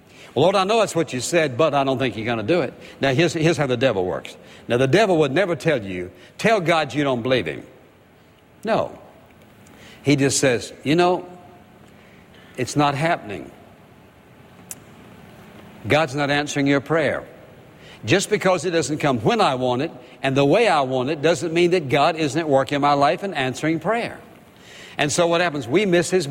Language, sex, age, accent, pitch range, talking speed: English, male, 60-79, American, 135-180 Hz, 195 wpm